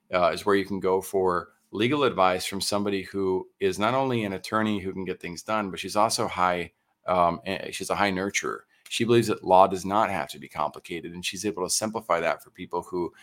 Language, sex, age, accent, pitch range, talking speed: English, male, 40-59, American, 90-105 Hz, 225 wpm